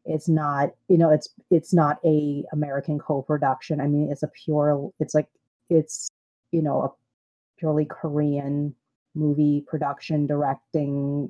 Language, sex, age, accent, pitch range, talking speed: English, female, 30-49, American, 145-160 Hz, 140 wpm